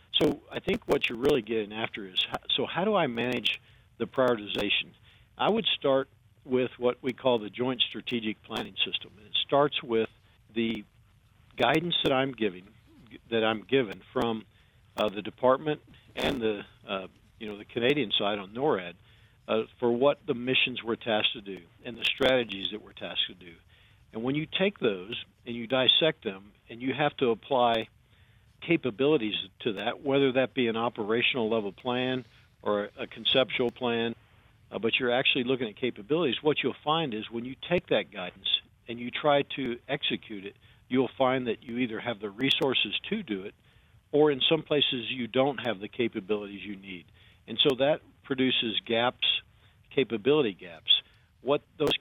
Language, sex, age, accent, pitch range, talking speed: English, male, 50-69, American, 105-130 Hz, 175 wpm